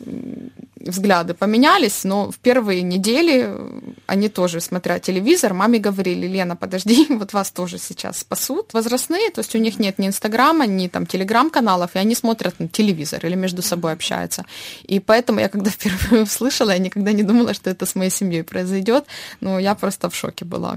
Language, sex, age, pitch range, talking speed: Russian, female, 20-39, 180-230 Hz, 175 wpm